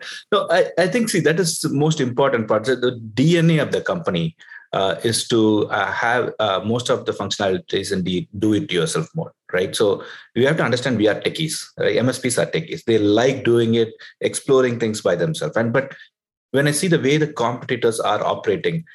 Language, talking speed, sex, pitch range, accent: English, 195 wpm, male, 110-155 Hz, Indian